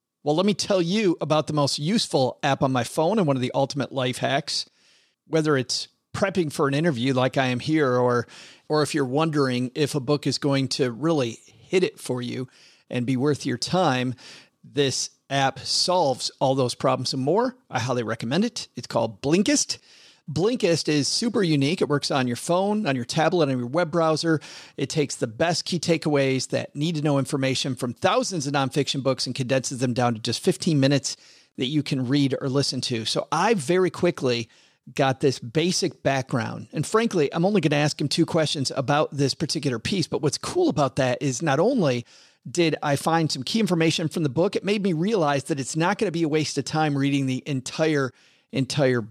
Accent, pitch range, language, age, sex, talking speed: American, 130-165 Hz, English, 40-59, male, 210 wpm